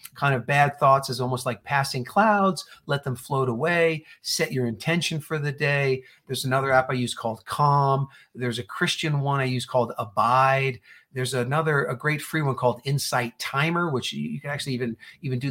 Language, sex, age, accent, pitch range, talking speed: English, male, 40-59, American, 130-160 Hz, 195 wpm